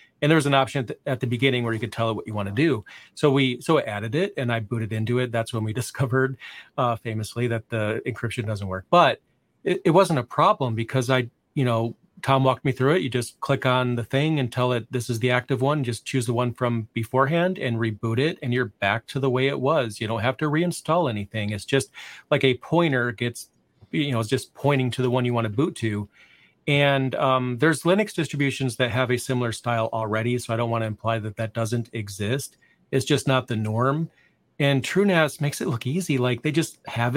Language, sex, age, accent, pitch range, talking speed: English, male, 30-49, American, 115-135 Hz, 240 wpm